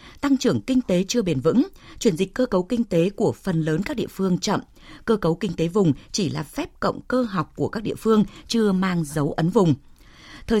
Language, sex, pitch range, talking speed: Vietnamese, female, 170-235 Hz, 230 wpm